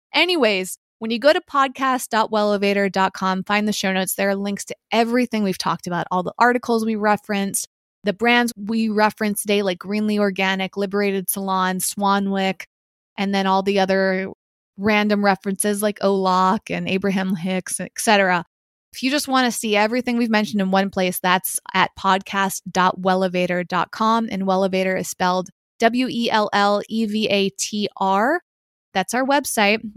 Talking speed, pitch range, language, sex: 140 wpm, 190-225 Hz, English, female